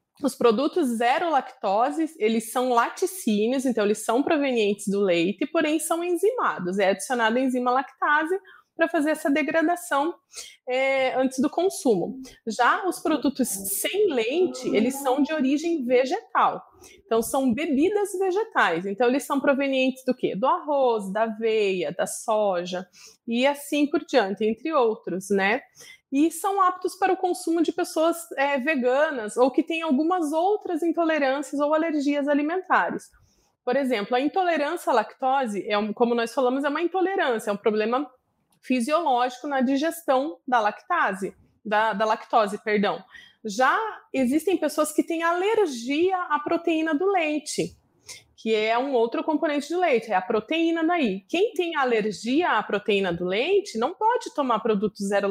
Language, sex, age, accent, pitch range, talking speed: Portuguese, female, 20-39, Brazilian, 230-330 Hz, 150 wpm